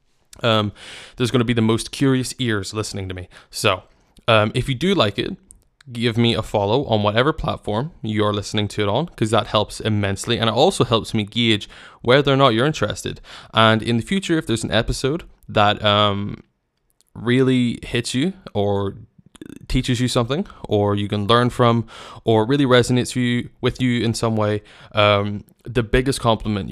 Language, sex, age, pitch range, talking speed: English, male, 20-39, 105-125 Hz, 180 wpm